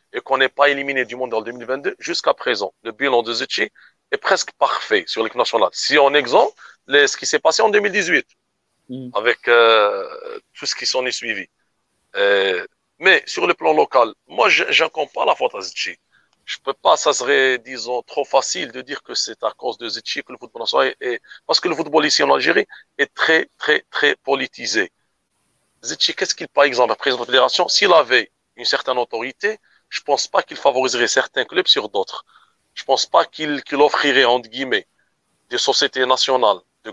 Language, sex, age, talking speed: French, male, 40-59, 205 wpm